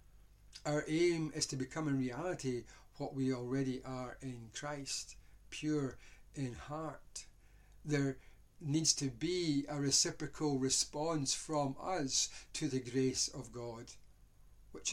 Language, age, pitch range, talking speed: English, 60-79, 115-145 Hz, 125 wpm